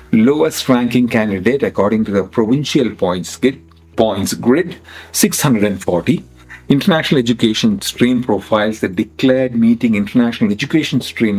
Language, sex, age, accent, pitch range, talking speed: English, male, 50-69, Indian, 95-150 Hz, 105 wpm